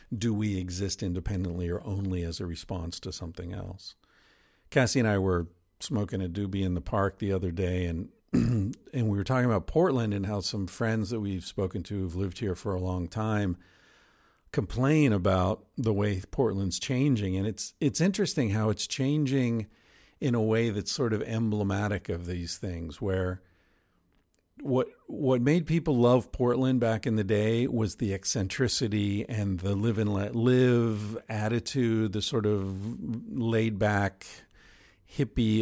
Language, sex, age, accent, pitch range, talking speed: English, male, 50-69, American, 95-120 Hz, 160 wpm